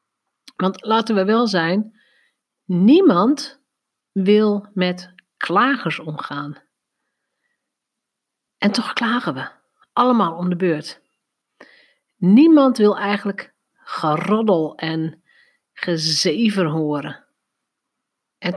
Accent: Dutch